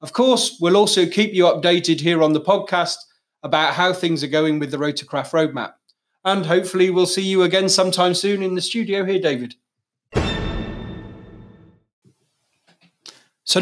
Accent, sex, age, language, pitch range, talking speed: British, male, 30-49, English, 155-185 Hz, 150 wpm